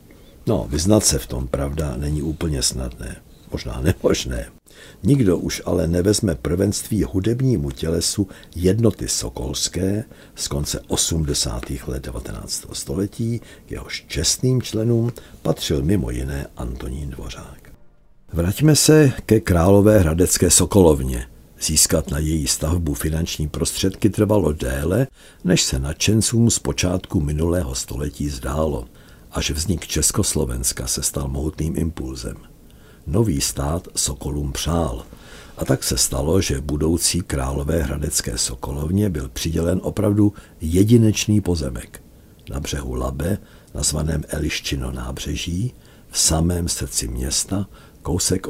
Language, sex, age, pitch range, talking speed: Czech, male, 60-79, 70-95 Hz, 115 wpm